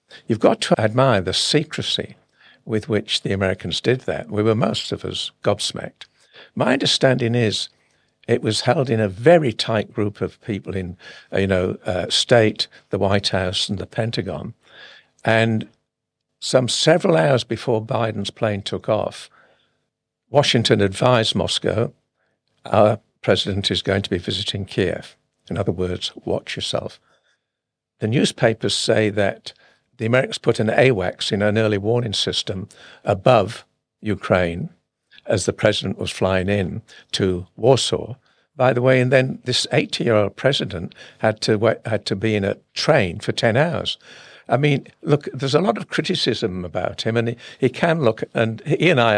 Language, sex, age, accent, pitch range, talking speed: English, male, 60-79, British, 100-120 Hz, 160 wpm